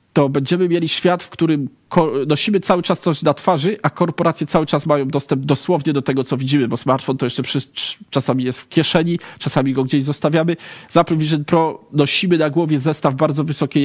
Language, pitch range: Polish, 130-150 Hz